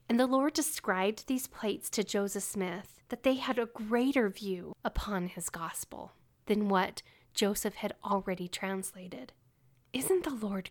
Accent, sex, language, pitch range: American, female, English, 185-240 Hz